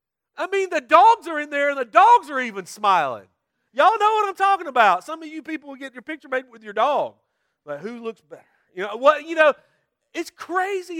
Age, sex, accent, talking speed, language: 40-59, male, American, 220 wpm, English